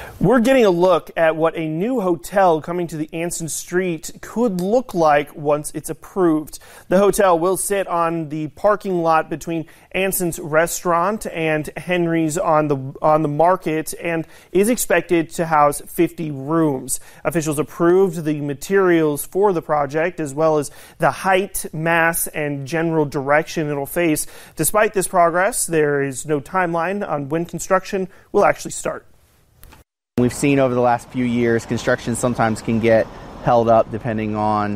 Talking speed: 160 wpm